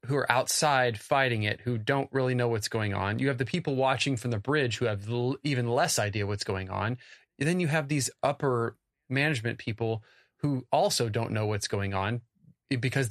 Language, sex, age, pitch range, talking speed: English, male, 30-49, 115-150 Hz, 195 wpm